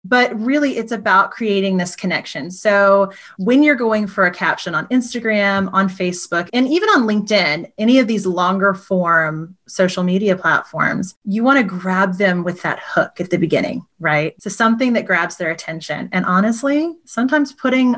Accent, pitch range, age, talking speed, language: American, 180-235 Hz, 30-49, 175 wpm, English